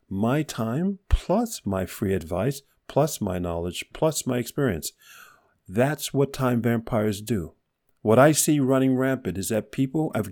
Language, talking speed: English, 150 wpm